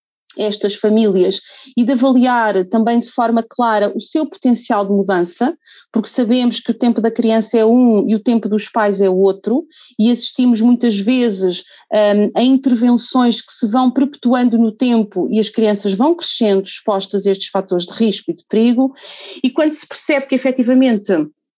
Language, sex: Portuguese, female